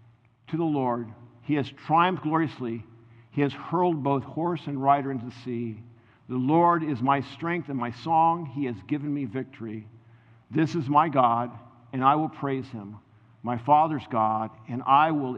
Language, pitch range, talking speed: English, 120-145 Hz, 175 wpm